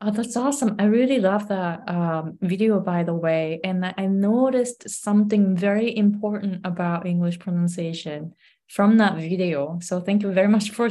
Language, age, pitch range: Japanese, 20-39, 165-205 Hz